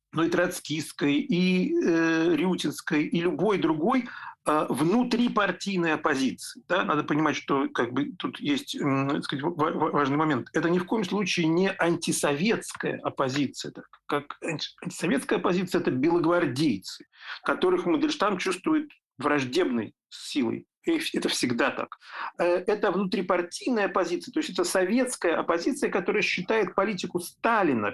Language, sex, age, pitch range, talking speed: Russian, male, 50-69, 170-250 Hz, 125 wpm